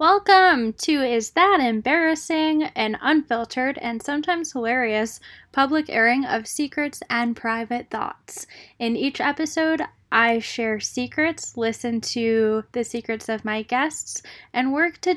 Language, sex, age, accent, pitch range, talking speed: English, female, 10-29, American, 215-280 Hz, 130 wpm